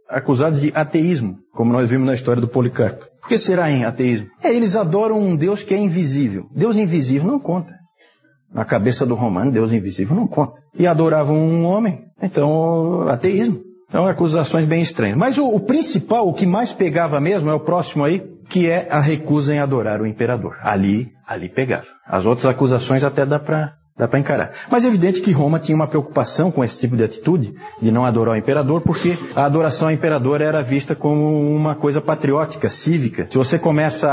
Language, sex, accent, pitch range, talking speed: Portuguese, male, Brazilian, 130-170 Hz, 195 wpm